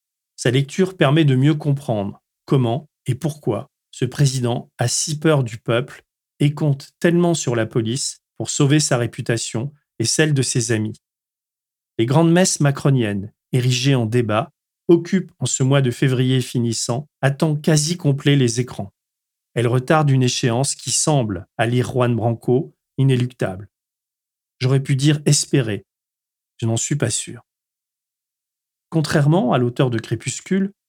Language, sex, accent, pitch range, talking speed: French, male, French, 120-155 Hz, 150 wpm